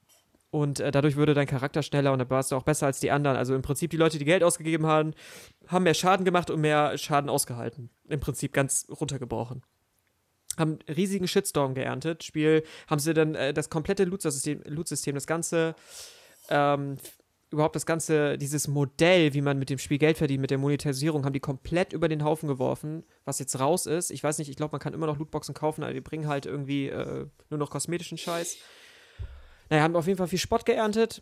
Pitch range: 135-160 Hz